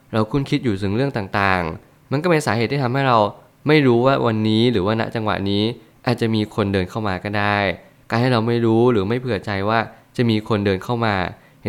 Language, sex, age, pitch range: Thai, male, 20-39, 100-120 Hz